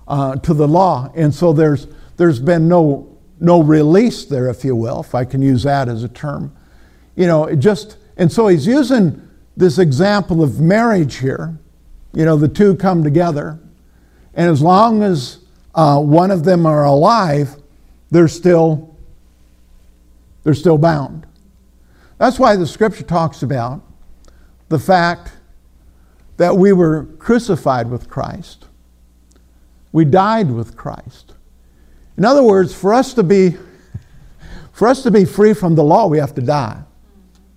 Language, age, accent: English, 50-69, American